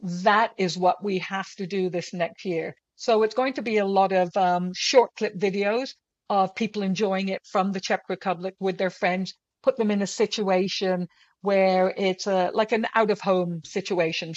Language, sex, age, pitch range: English, female, 60-79, 185-230 Hz